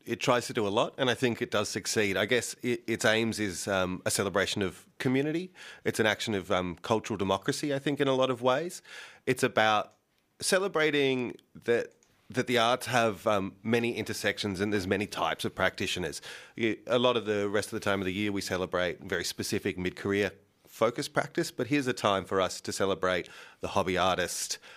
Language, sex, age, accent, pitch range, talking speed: English, male, 30-49, Australian, 95-120 Hz, 200 wpm